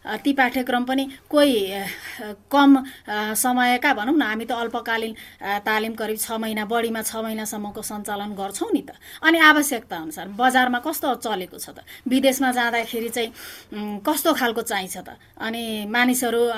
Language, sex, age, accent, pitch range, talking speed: English, female, 30-49, Indian, 225-280 Hz, 140 wpm